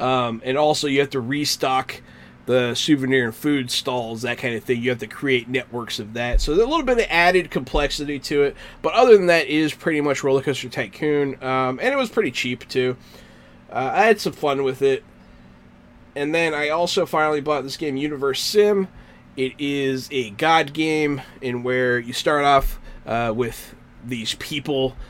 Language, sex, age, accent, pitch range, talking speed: English, male, 20-39, American, 125-150 Hz, 195 wpm